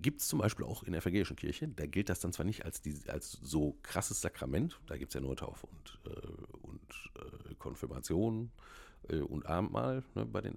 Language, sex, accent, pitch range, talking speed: German, male, German, 80-110 Hz, 215 wpm